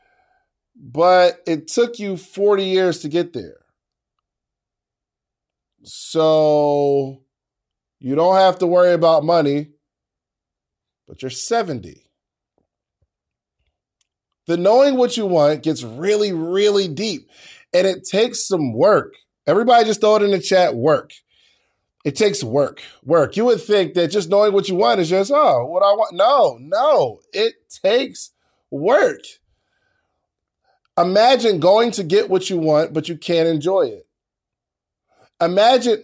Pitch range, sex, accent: 165-235 Hz, male, American